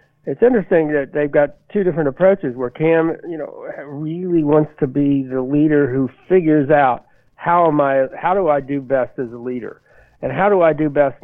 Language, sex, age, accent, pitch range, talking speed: English, male, 60-79, American, 130-160 Hz, 205 wpm